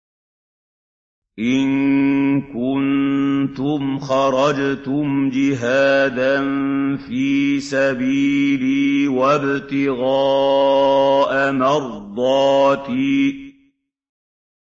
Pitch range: 135-140 Hz